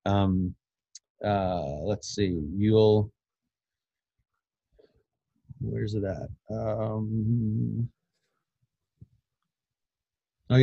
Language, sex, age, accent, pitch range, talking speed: English, male, 30-49, American, 100-120 Hz, 55 wpm